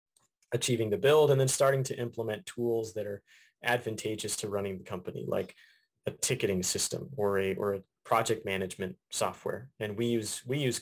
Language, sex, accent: English, male, American